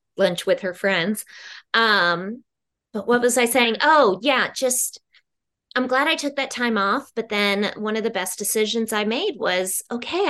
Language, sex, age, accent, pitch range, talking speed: English, female, 20-39, American, 185-225 Hz, 180 wpm